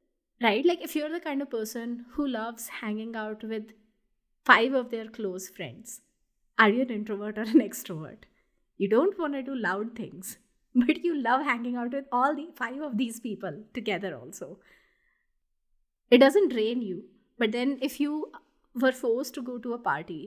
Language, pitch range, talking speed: English, 205-275 Hz, 180 wpm